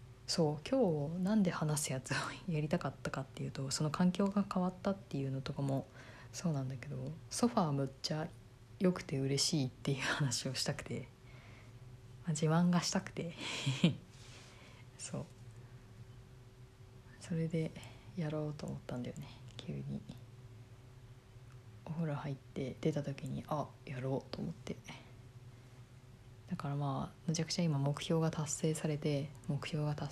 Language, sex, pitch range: Japanese, female, 120-155 Hz